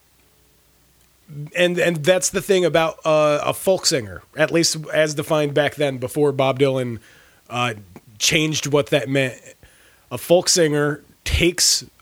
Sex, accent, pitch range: male, American, 130-165 Hz